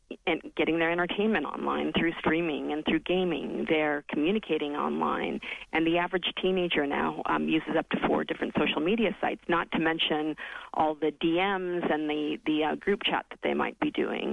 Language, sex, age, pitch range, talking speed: English, female, 40-59, 155-195 Hz, 185 wpm